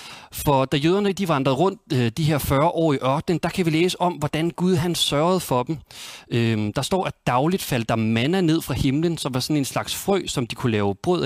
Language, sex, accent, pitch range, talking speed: Danish, male, native, 125-170 Hz, 235 wpm